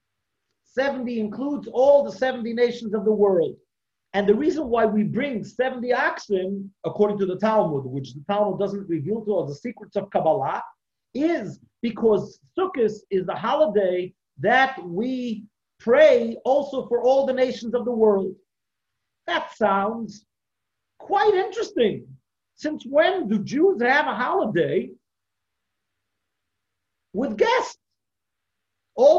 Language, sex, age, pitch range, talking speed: English, male, 50-69, 205-305 Hz, 130 wpm